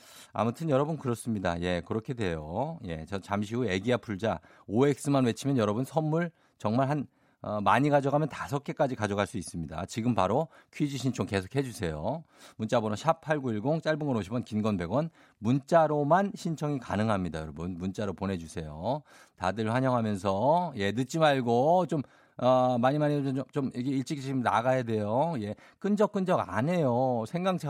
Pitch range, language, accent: 115-175 Hz, Korean, native